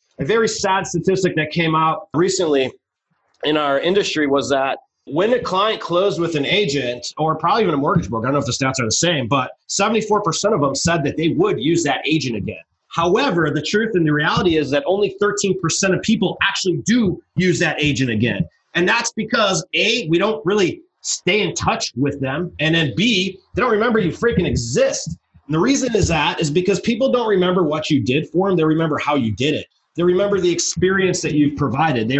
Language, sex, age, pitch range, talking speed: English, male, 30-49, 140-185 Hz, 215 wpm